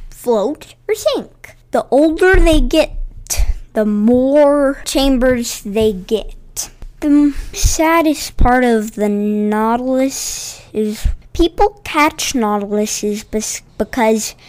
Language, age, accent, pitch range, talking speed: English, 20-39, American, 220-300 Hz, 95 wpm